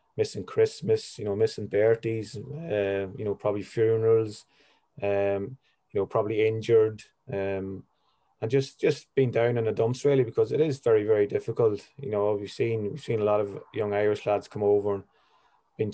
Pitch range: 100-115 Hz